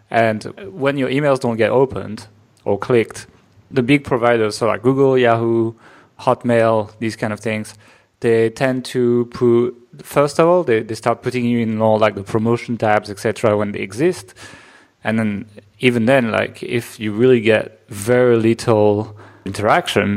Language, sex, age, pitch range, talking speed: English, male, 20-39, 110-130 Hz, 165 wpm